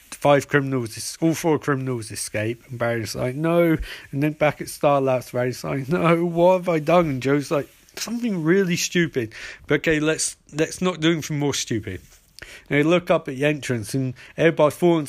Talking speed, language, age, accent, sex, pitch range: 190 wpm, English, 40-59, British, male, 125-160 Hz